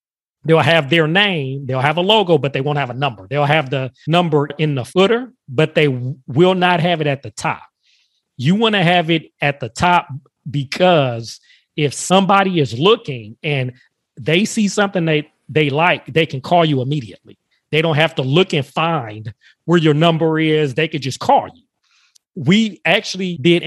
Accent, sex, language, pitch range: American, male, English, 140-175 Hz